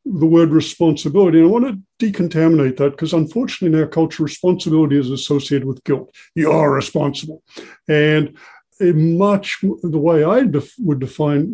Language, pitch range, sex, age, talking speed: English, 145-185 Hz, male, 60-79, 160 wpm